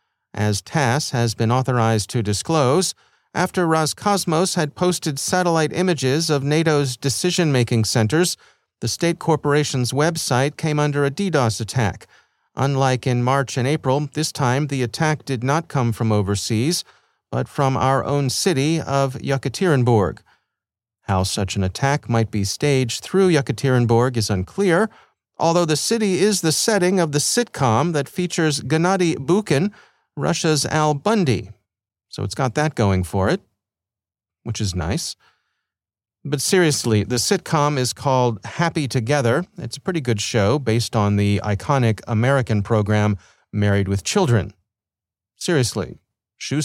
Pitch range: 110-160 Hz